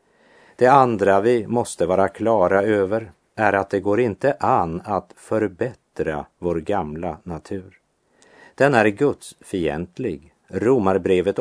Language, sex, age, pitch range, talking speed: German, male, 50-69, 90-120 Hz, 120 wpm